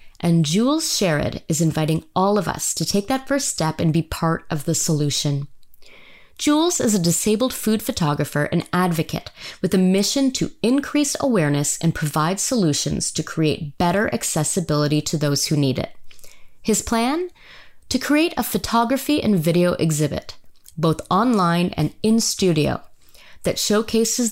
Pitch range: 155-210 Hz